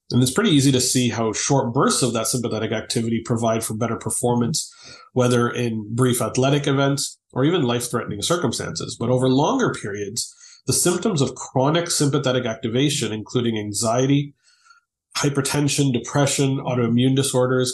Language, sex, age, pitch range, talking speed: English, male, 30-49, 115-140 Hz, 145 wpm